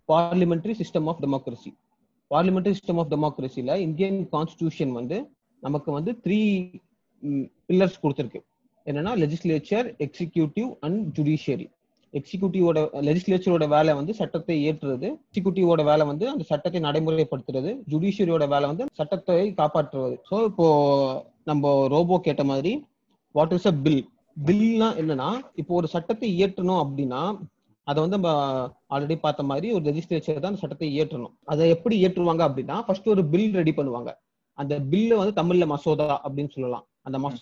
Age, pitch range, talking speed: 30-49, 150-195 Hz, 125 wpm